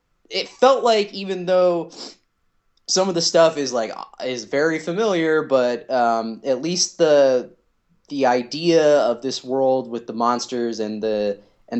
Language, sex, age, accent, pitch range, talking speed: English, male, 20-39, American, 125-175 Hz, 155 wpm